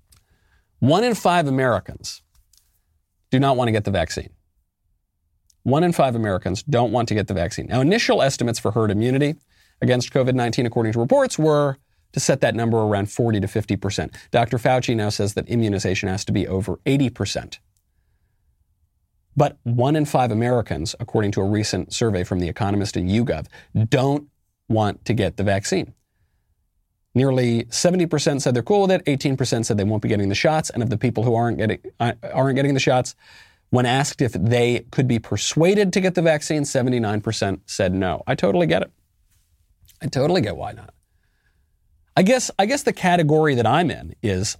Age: 40-59